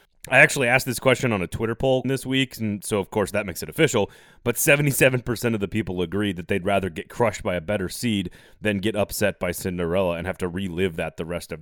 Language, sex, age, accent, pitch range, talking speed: English, male, 30-49, American, 100-130 Hz, 245 wpm